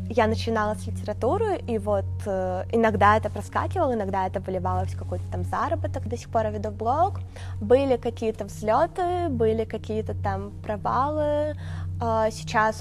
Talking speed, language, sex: 135 wpm, Russian, female